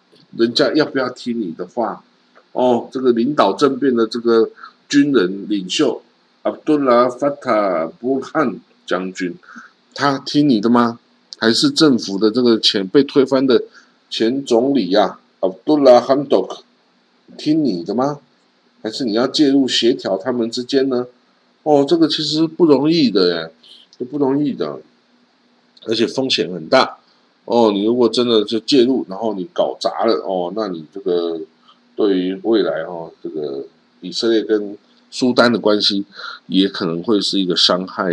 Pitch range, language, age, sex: 100-140 Hz, Chinese, 50-69, male